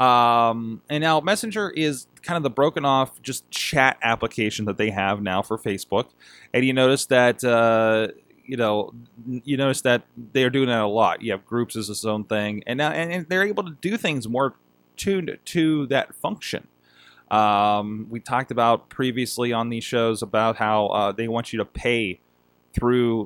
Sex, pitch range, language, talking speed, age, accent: male, 100-135 Hz, English, 185 wpm, 20-39, American